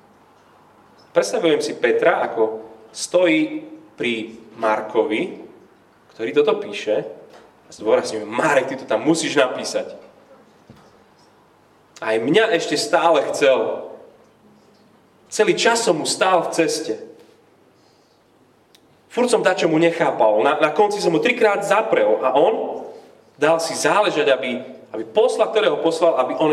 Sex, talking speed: male, 125 wpm